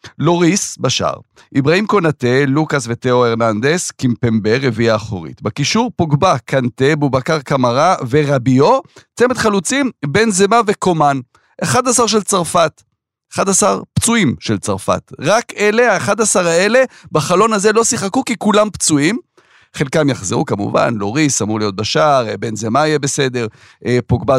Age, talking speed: 40-59, 125 wpm